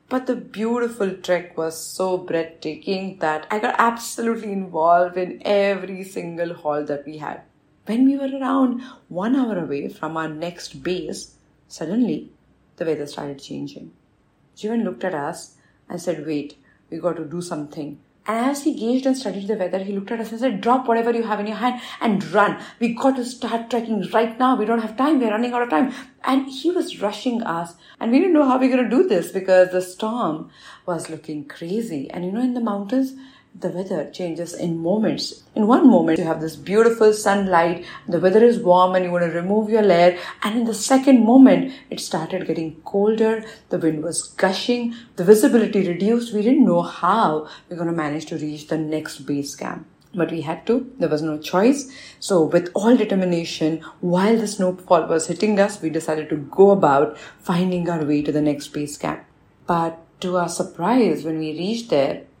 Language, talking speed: English, 200 wpm